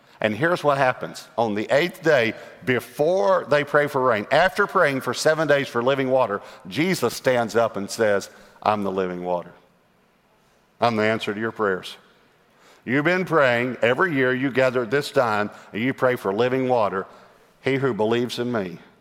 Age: 50-69